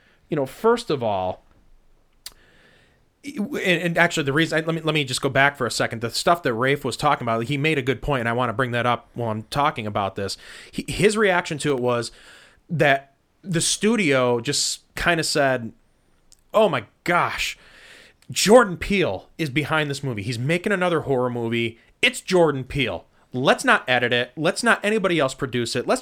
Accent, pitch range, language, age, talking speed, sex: American, 125-165 Hz, English, 30-49, 190 wpm, male